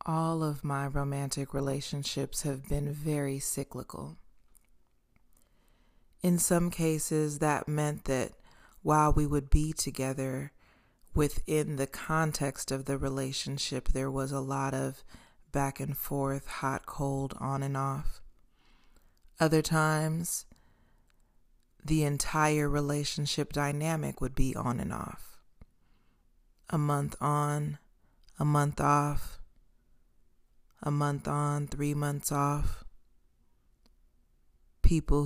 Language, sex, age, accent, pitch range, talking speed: English, female, 20-39, American, 135-155 Hz, 105 wpm